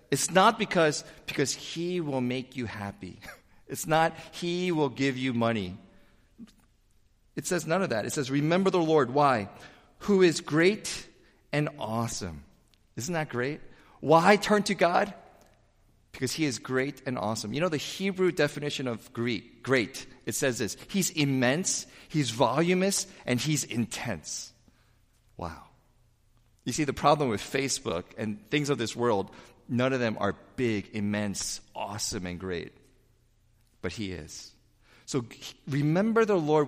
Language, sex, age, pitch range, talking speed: English, male, 40-59, 110-155 Hz, 145 wpm